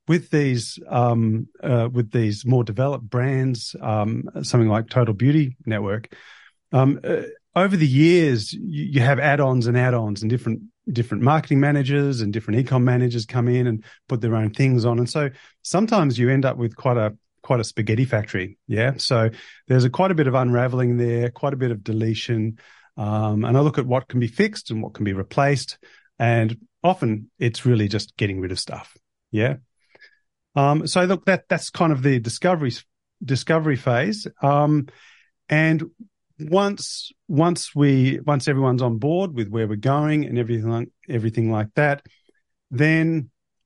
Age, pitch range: 30-49, 115-150 Hz